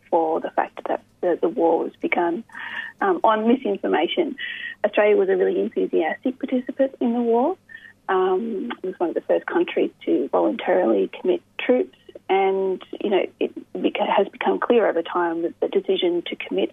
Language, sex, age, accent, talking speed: English, female, 30-49, Australian, 170 wpm